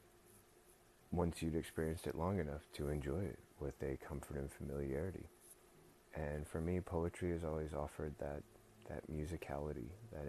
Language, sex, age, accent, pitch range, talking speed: English, male, 30-49, American, 70-80 Hz, 145 wpm